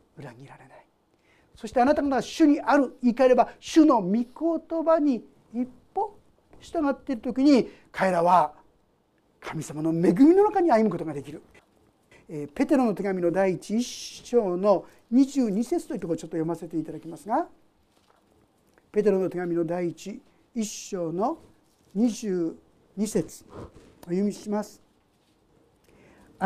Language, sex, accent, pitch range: Japanese, male, native, 190-285 Hz